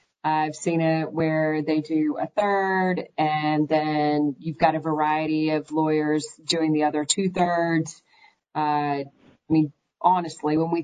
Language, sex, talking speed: English, female, 150 wpm